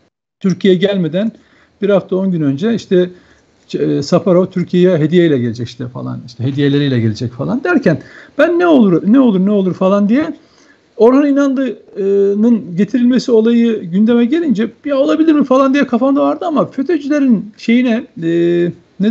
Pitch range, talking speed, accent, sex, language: 165-240 Hz, 150 wpm, native, male, Turkish